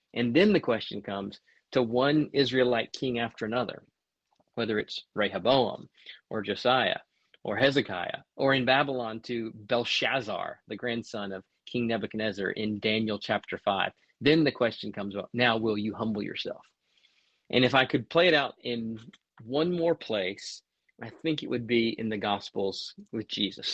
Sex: male